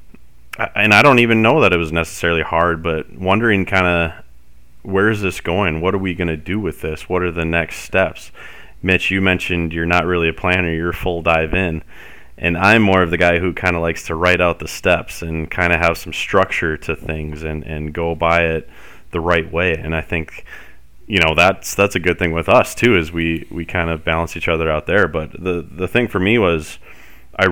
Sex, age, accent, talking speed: male, 30-49, American, 235 wpm